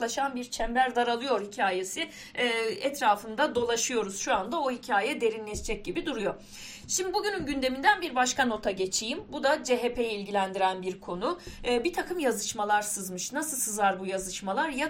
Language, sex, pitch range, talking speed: Turkish, female, 205-280 Hz, 150 wpm